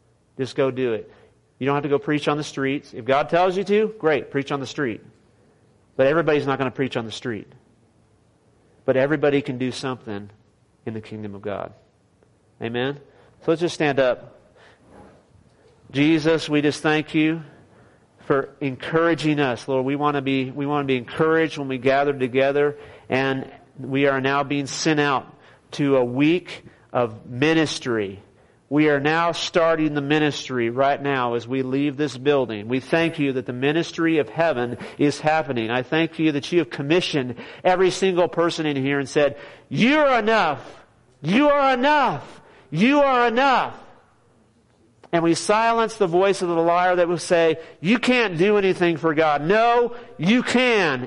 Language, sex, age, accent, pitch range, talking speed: English, male, 40-59, American, 130-170 Hz, 170 wpm